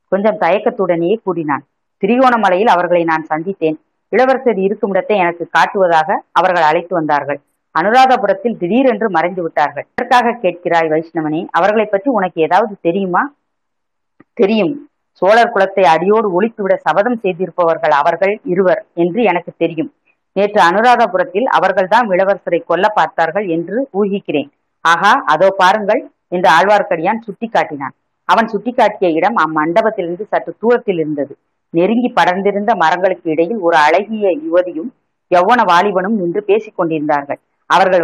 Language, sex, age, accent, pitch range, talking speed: Tamil, female, 30-49, native, 165-215 Hz, 110 wpm